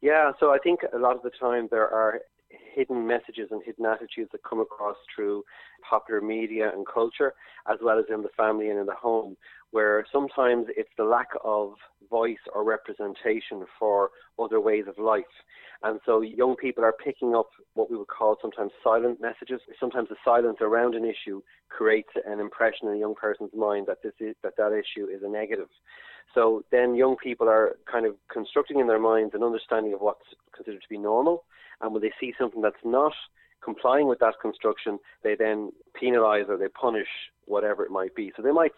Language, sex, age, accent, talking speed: English, male, 30-49, Irish, 200 wpm